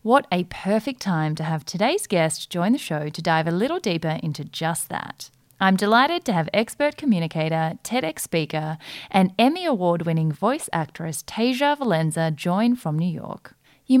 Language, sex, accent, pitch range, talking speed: English, female, Australian, 160-225 Hz, 170 wpm